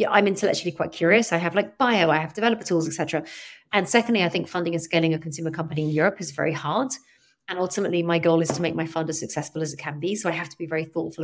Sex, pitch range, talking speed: female, 160-195 Hz, 270 wpm